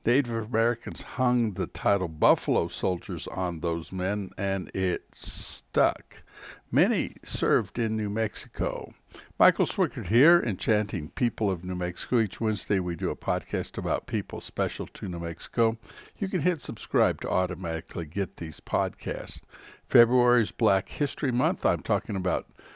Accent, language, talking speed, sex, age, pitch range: American, English, 145 wpm, male, 60-79, 95-115 Hz